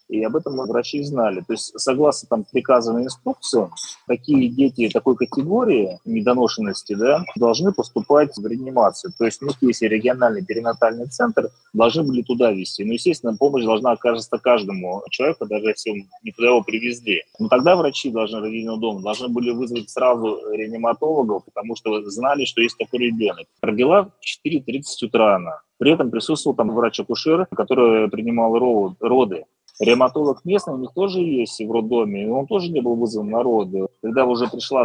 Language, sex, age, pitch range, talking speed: Russian, male, 30-49, 110-135 Hz, 160 wpm